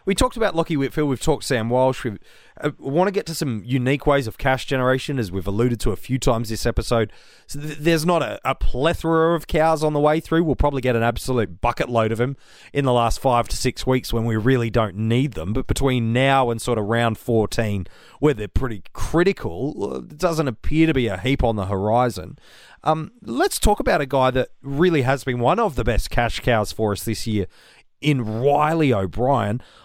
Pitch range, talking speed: 115-150 Hz, 215 wpm